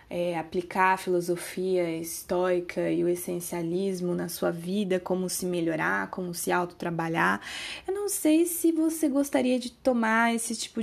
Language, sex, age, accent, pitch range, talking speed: Portuguese, female, 20-39, Brazilian, 180-255 Hz, 145 wpm